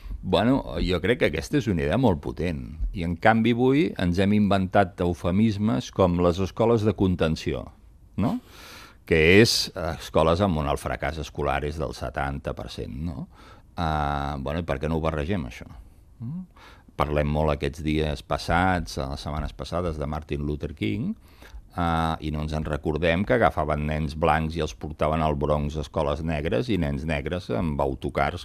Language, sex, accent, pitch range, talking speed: Spanish, male, Spanish, 70-90 Hz, 170 wpm